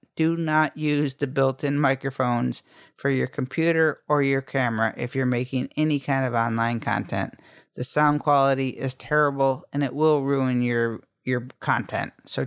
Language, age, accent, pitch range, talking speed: English, 50-69, American, 130-155 Hz, 160 wpm